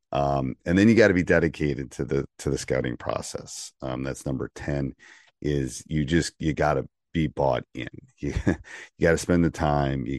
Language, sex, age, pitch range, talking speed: English, male, 40-59, 70-80 Hz, 190 wpm